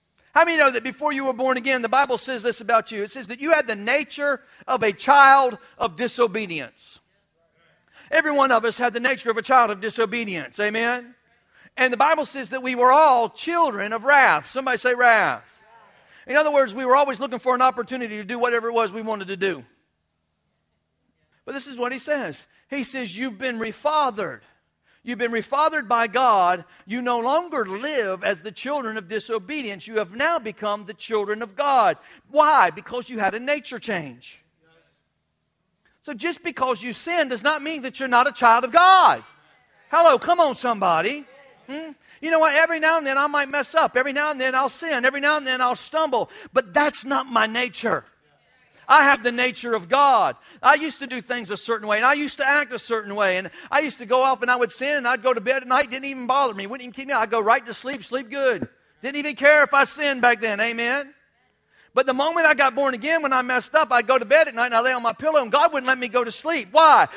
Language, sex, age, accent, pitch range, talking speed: English, male, 50-69, American, 230-285 Hz, 230 wpm